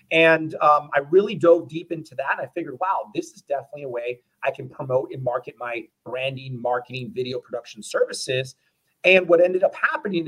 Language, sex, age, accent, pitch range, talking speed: English, male, 30-49, American, 135-180 Hz, 185 wpm